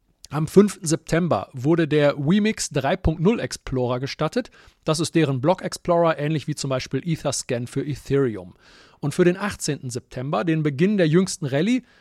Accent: German